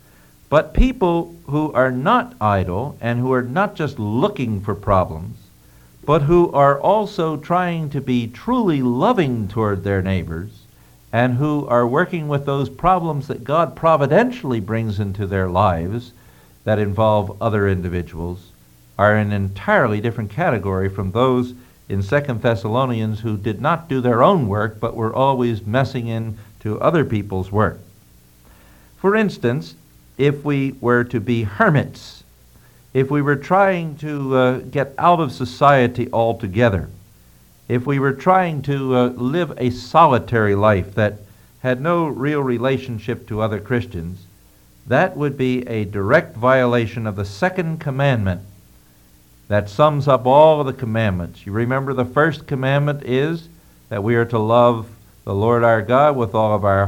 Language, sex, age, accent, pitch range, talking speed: English, male, 60-79, American, 100-140 Hz, 150 wpm